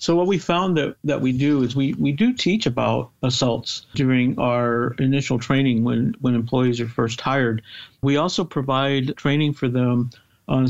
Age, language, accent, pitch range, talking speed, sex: 50-69, English, American, 120-140 Hz, 180 wpm, male